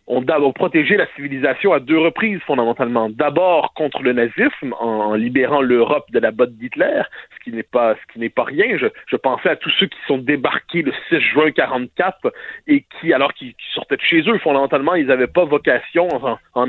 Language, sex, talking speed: French, male, 205 wpm